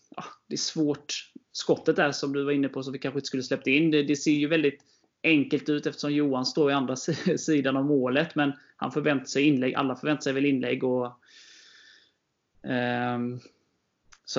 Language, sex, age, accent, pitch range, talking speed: Swedish, male, 20-39, native, 130-150 Hz, 190 wpm